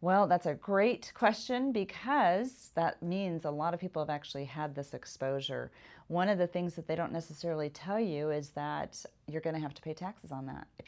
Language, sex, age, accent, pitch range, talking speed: English, female, 30-49, American, 150-180 Hz, 215 wpm